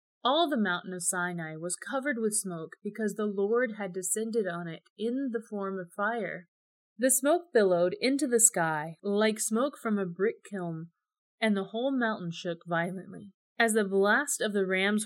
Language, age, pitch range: English, 30-49, 185-245 Hz